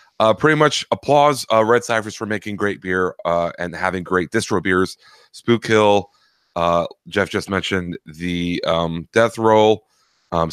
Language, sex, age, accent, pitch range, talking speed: English, male, 30-49, American, 90-110 Hz, 160 wpm